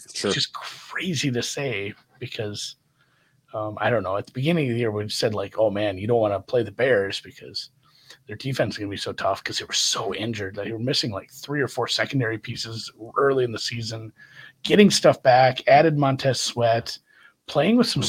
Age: 40-59